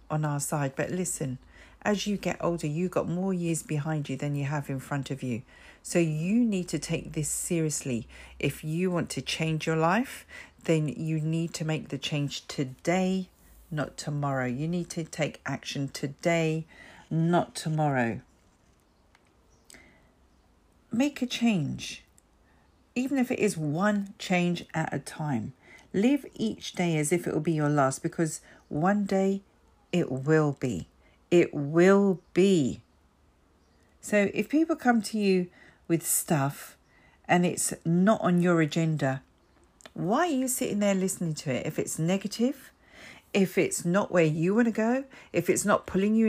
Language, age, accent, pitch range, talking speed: English, 50-69, British, 140-205 Hz, 160 wpm